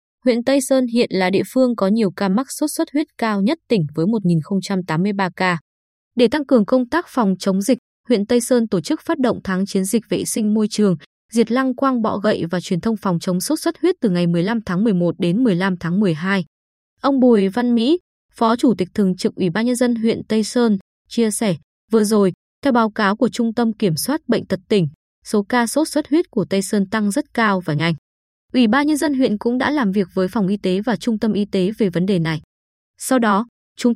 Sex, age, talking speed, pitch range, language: female, 20-39, 235 wpm, 190-250 Hz, Vietnamese